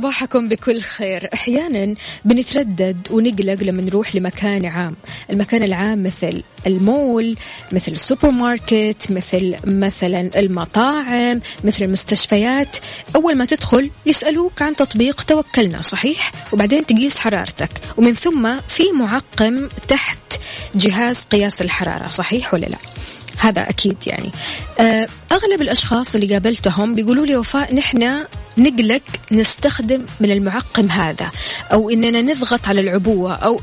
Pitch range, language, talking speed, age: 200-255 Hz, Arabic, 120 wpm, 20-39